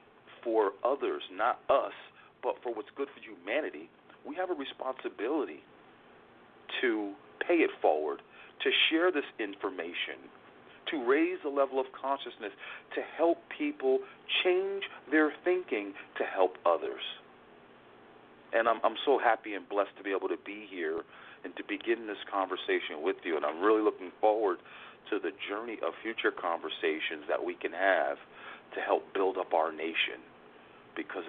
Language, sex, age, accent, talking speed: English, male, 40-59, American, 150 wpm